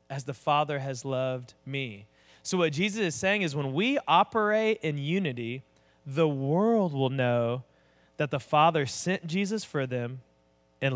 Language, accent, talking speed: English, American, 160 wpm